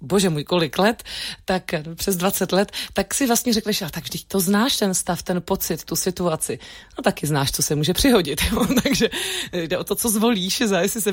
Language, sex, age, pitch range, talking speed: Czech, female, 30-49, 180-225 Hz, 205 wpm